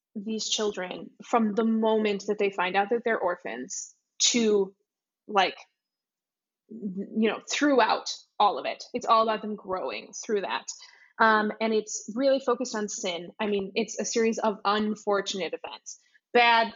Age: 20-39